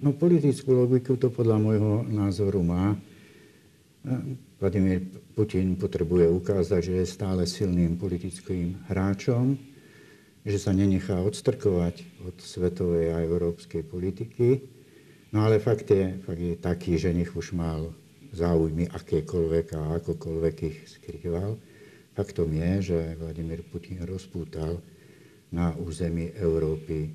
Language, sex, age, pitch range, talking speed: Slovak, male, 60-79, 85-105 Hz, 115 wpm